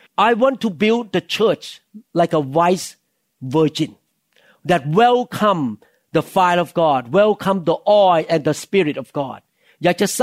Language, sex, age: Thai, male, 50-69